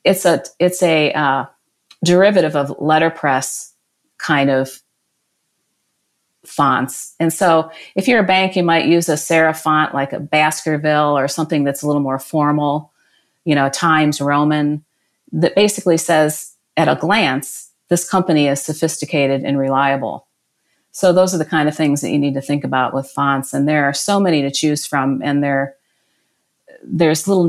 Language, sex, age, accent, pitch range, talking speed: English, female, 40-59, American, 140-165 Hz, 165 wpm